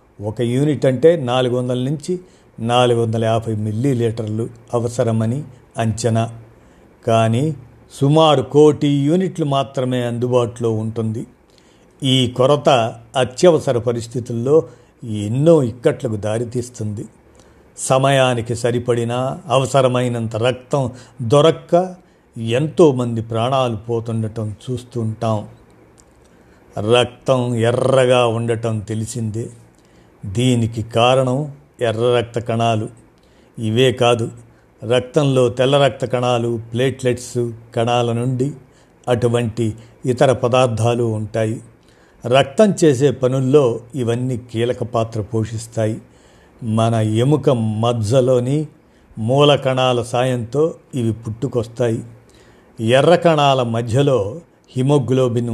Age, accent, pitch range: 50-69, native, 115-130 Hz